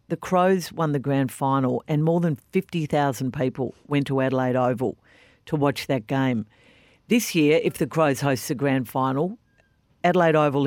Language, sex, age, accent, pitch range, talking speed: English, female, 50-69, Australian, 135-165 Hz, 170 wpm